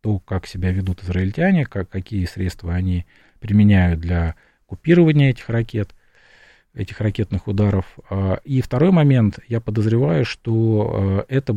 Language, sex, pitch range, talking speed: Russian, male, 95-115 Hz, 125 wpm